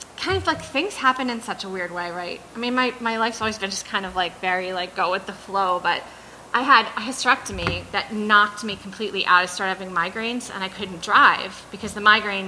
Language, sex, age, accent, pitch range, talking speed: English, female, 30-49, American, 180-220 Hz, 235 wpm